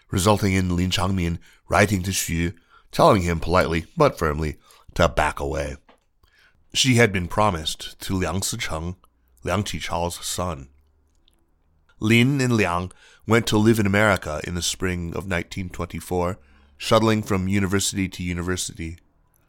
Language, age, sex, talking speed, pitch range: English, 30-49, male, 130 wpm, 85-105 Hz